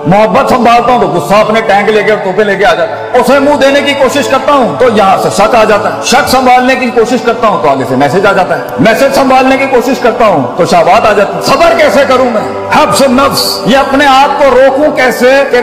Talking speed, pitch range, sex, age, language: 255 wpm, 210-270 Hz, male, 50-69, Urdu